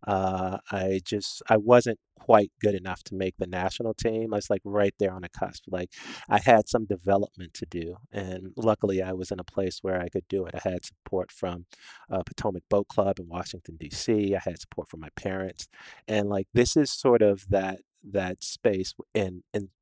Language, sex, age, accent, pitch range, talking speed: English, male, 40-59, American, 90-105 Hz, 210 wpm